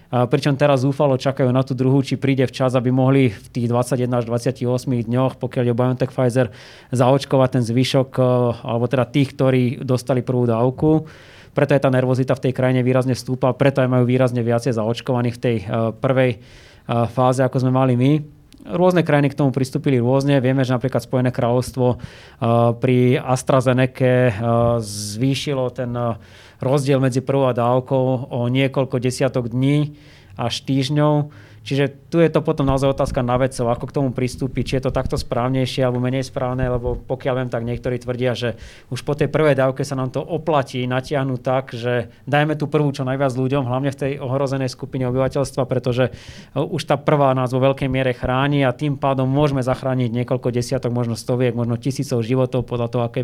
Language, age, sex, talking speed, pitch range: Slovak, 20-39, male, 180 wpm, 125-135 Hz